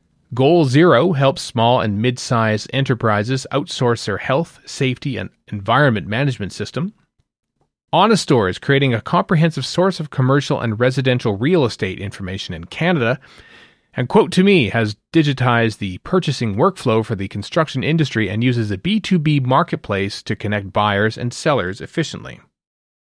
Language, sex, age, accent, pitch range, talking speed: English, male, 40-59, American, 110-150 Hz, 140 wpm